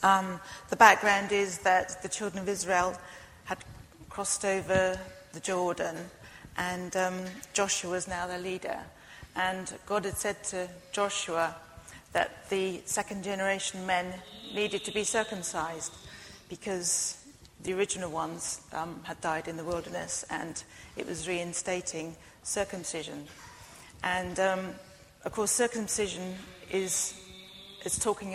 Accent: British